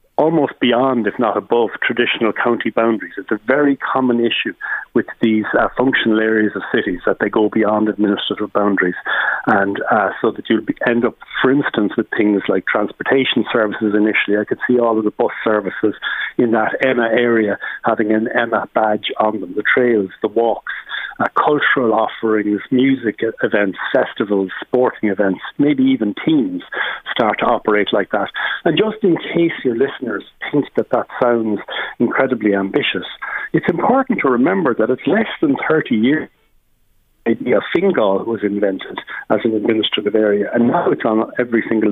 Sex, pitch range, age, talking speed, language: male, 105-125 Hz, 50-69, 165 wpm, English